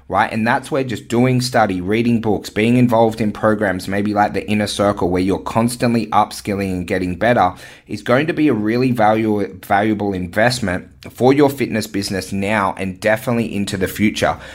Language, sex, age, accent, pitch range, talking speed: English, male, 30-49, Australian, 95-120 Hz, 180 wpm